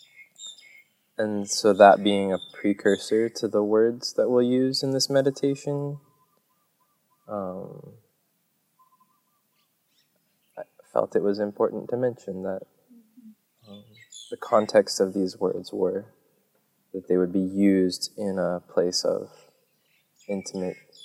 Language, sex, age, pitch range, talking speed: English, male, 20-39, 100-155 Hz, 115 wpm